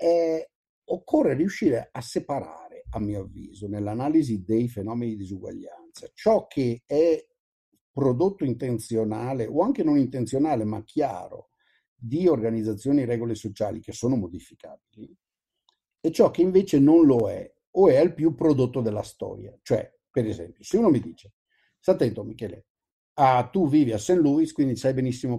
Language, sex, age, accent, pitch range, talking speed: Italian, male, 50-69, native, 105-140 Hz, 150 wpm